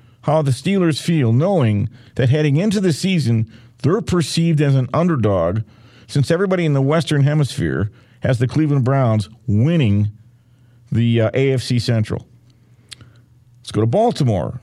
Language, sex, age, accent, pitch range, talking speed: English, male, 50-69, American, 120-140 Hz, 140 wpm